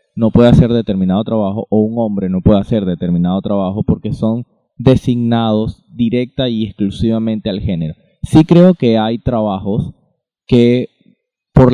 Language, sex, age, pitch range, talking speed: Spanish, male, 20-39, 100-120 Hz, 145 wpm